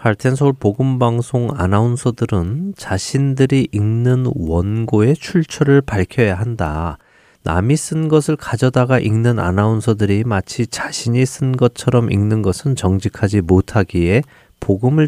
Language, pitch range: Korean, 95-125 Hz